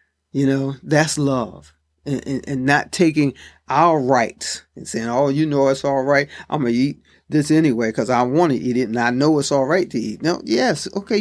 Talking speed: 225 wpm